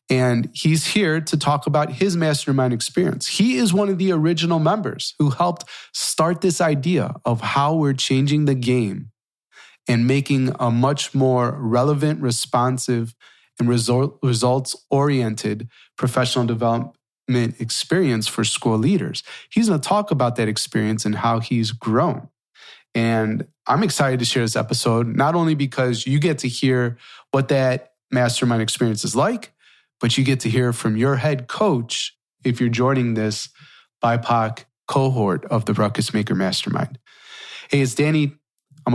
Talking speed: 150 wpm